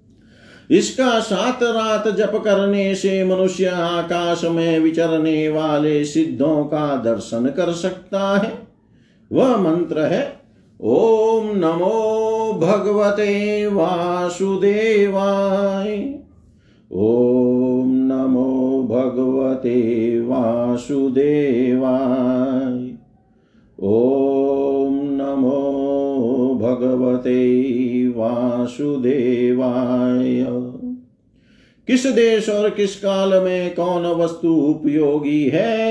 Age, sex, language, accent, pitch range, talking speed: 50-69, male, Hindi, native, 130-195 Hz, 70 wpm